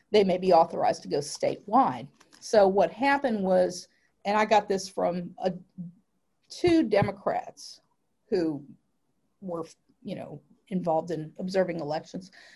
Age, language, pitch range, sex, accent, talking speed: 40-59, English, 190-230 Hz, female, American, 125 wpm